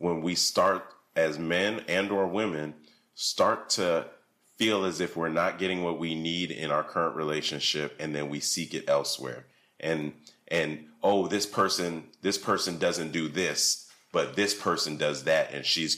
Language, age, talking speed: English, 30-49, 175 wpm